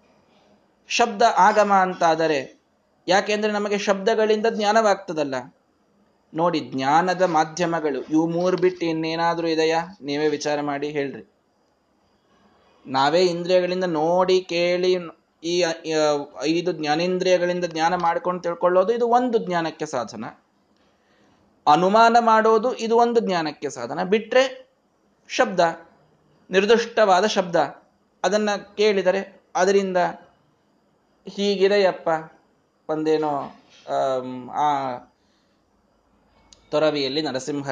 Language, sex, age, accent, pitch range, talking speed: Kannada, male, 20-39, native, 155-200 Hz, 80 wpm